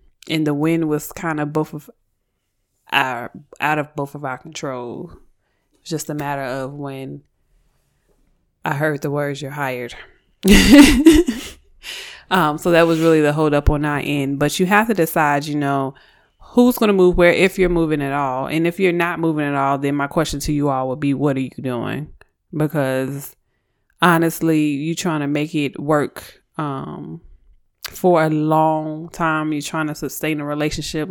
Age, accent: 20-39, American